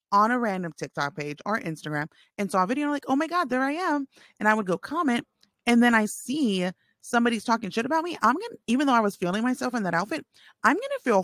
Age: 30-49